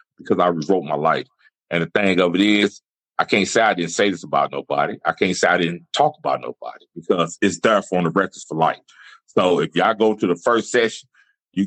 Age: 30-49